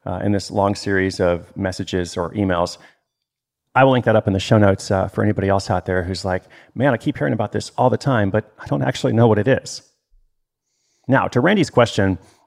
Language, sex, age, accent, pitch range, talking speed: English, male, 30-49, American, 100-125 Hz, 225 wpm